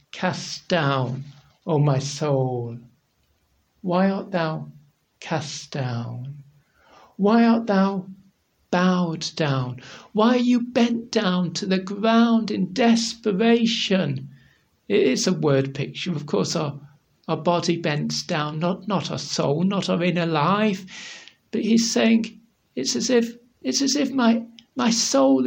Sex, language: male, English